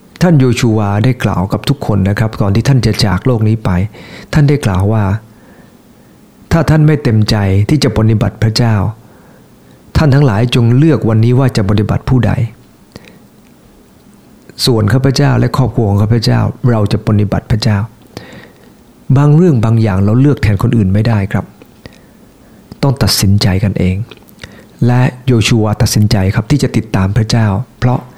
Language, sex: English, male